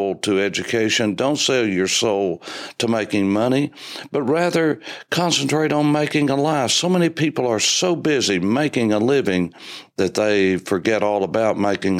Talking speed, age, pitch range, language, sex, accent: 155 wpm, 60-79, 95-135 Hz, English, male, American